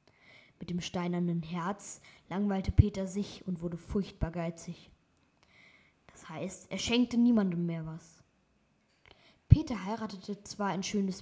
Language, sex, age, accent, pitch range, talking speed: German, female, 20-39, German, 175-210 Hz, 125 wpm